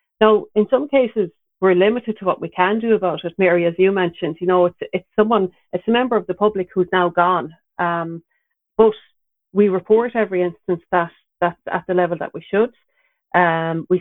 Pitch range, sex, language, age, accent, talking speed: 170-195 Hz, female, English, 40-59, Irish, 200 wpm